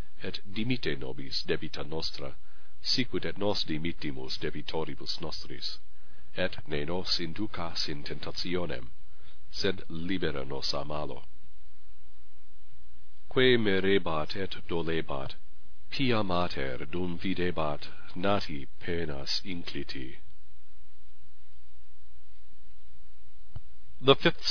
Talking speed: 85 wpm